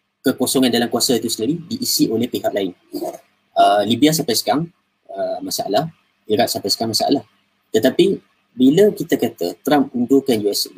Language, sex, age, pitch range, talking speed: Malay, male, 20-39, 115-180 Hz, 145 wpm